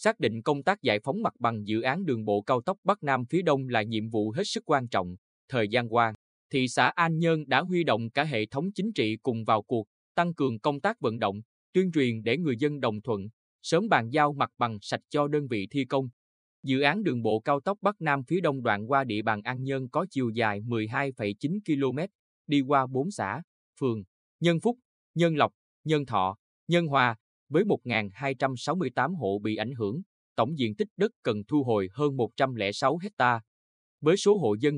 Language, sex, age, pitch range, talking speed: Vietnamese, male, 20-39, 110-150 Hz, 210 wpm